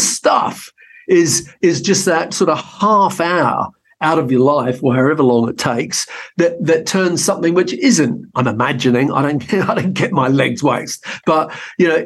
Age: 50-69